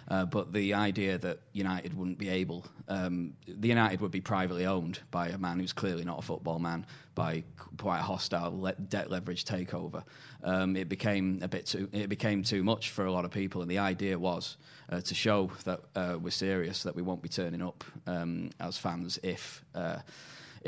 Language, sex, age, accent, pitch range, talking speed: English, male, 10-29, British, 90-100 Hz, 205 wpm